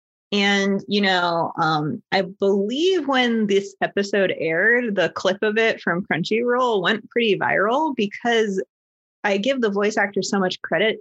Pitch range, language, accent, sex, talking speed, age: 185-230 Hz, English, American, female, 155 wpm, 20-39